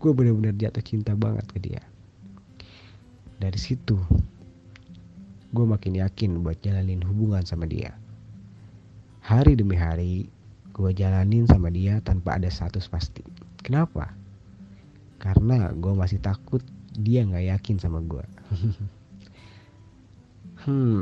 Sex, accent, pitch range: male, native, 95-115 Hz